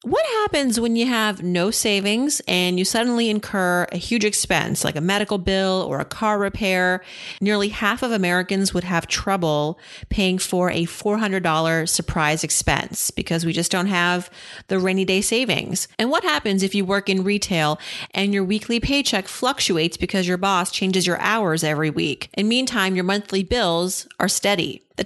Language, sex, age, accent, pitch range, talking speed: English, female, 30-49, American, 180-215 Hz, 175 wpm